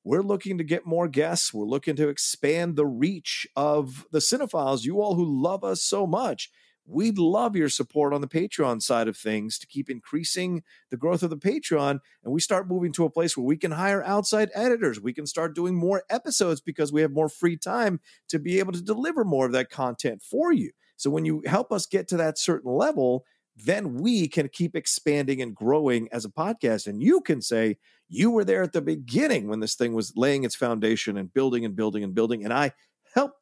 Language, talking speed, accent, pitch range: English, 220 wpm, American, 120-185 Hz